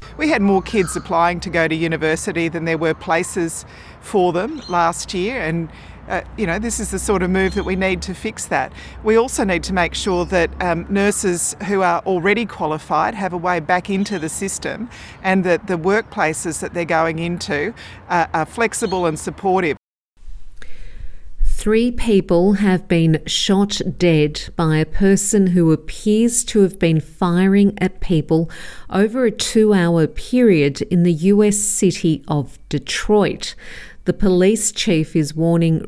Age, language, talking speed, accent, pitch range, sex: 40-59, English, 160 wpm, Australian, 165-200 Hz, female